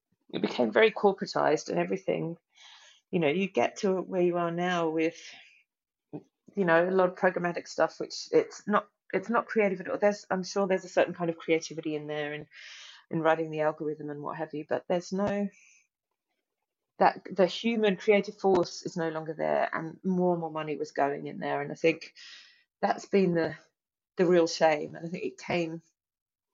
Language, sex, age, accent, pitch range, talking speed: English, female, 30-49, British, 155-195 Hz, 195 wpm